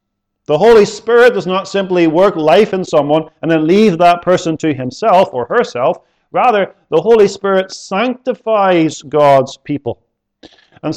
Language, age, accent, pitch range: English, 40-59, American, 130-210 Hz